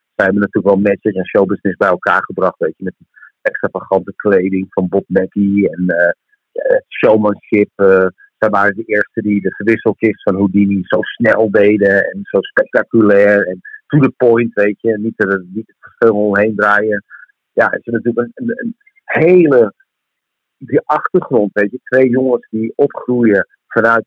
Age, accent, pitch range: 50-69, Dutch, 105-125 Hz